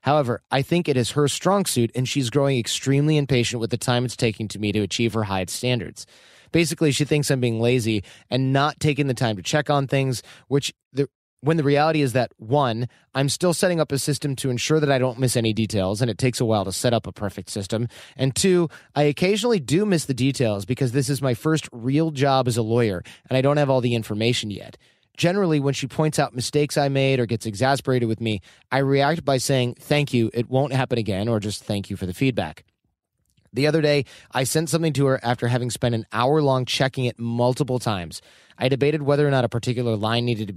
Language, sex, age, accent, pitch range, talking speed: English, male, 30-49, American, 115-145 Hz, 230 wpm